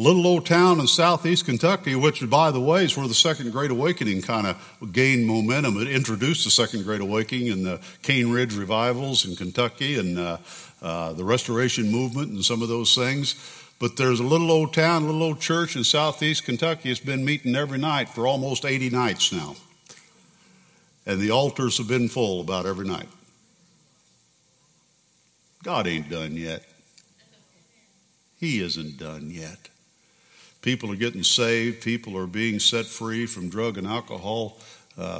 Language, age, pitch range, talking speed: English, 60-79, 100-145 Hz, 165 wpm